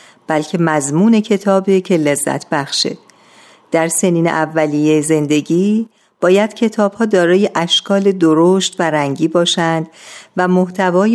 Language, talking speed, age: Persian, 110 wpm, 50-69